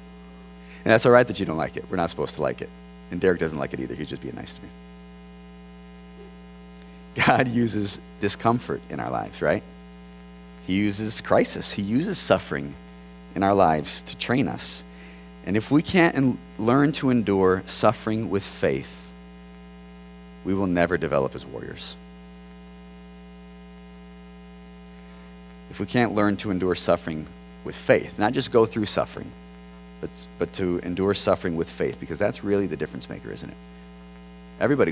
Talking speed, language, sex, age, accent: 160 wpm, English, male, 30-49, American